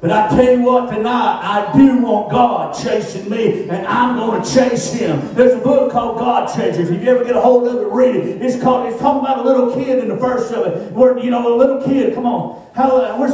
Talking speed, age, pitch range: 250 wpm, 40-59, 155-235 Hz